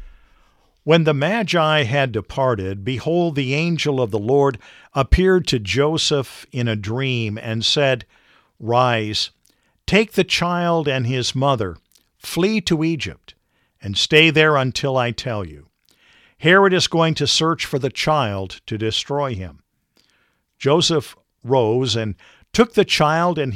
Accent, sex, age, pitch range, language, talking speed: American, male, 50-69, 115-155 Hz, English, 140 wpm